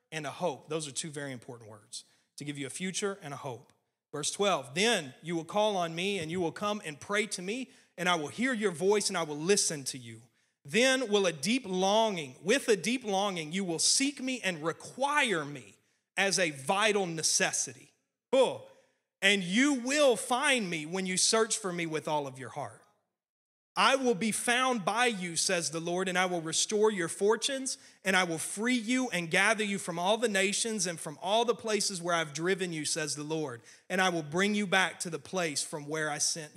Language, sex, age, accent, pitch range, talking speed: English, male, 30-49, American, 150-205 Hz, 215 wpm